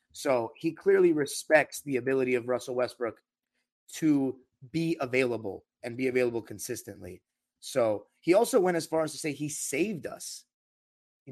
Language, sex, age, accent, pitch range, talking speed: English, male, 30-49, American, 120-165 Hz, 155 wpm